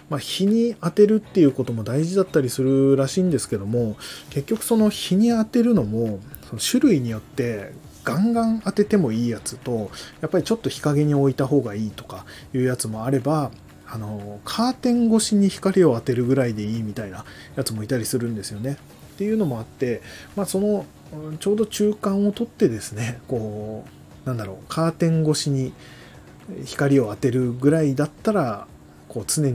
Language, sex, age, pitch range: Japanese, male, 20-39, 110-165 Hz